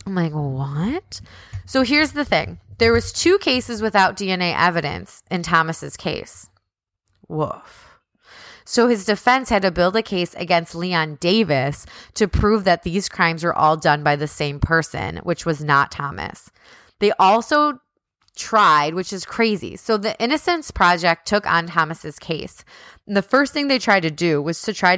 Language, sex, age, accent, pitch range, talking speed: English, female, 20-39, American, 150-210 Hz, 165 wpm